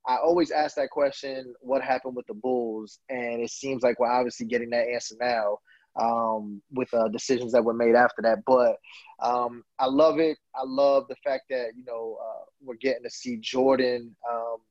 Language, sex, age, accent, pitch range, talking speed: English, male, 20-39, American, 120-155 Hz, 195 wpm